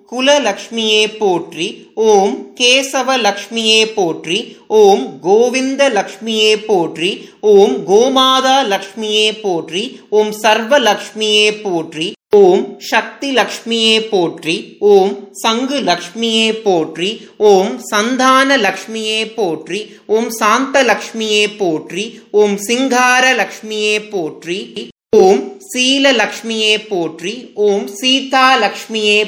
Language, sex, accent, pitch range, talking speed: Tamil, male, native, 205-260 Hz, 75 wpm